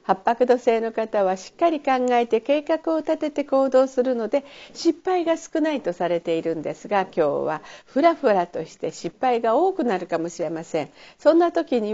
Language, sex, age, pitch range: Japanese, female, 50-69, 195-280 Hz